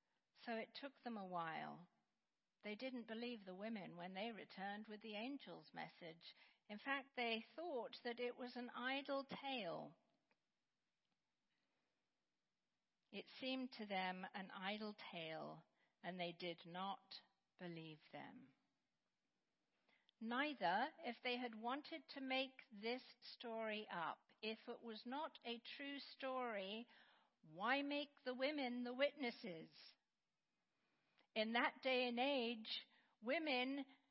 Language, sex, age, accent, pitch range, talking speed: English, female, 50-69, British, 200-270 Hz, 125 wpm